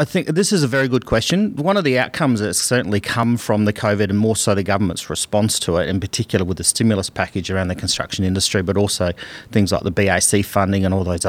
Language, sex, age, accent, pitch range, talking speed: English, male, 30-49, Australian, 100-125 Hz, 250 wpm